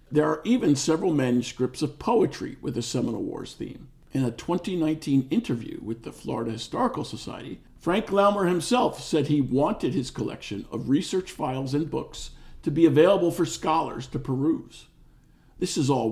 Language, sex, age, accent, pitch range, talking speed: English, male, 50-69, American, 125-160 Hz, 165 wpm